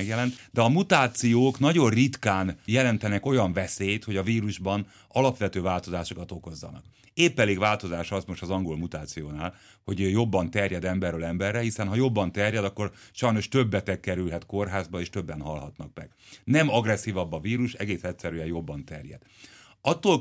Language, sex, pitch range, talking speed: Hungarian, male, 90-120 Hz, 150 wpm